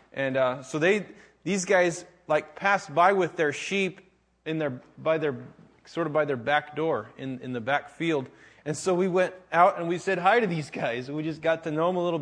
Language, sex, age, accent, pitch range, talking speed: English, male, 20-39, American, 145-185 Hz, 235 wpm